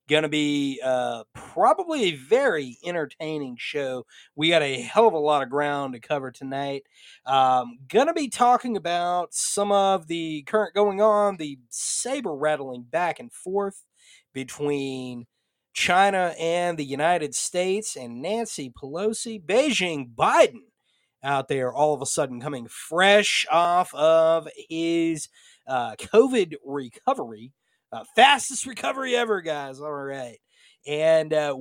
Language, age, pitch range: English, 30-49, 140-200 Hz